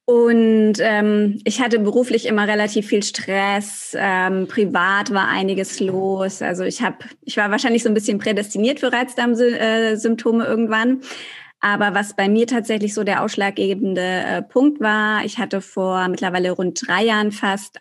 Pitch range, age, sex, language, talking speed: 190-230 Hz, 20-39, female, German, 160 wpm